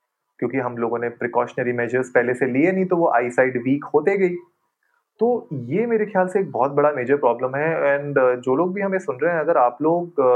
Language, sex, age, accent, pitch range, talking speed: Hindi, male, 30-49, native, 130-165 Hz, 225 wpm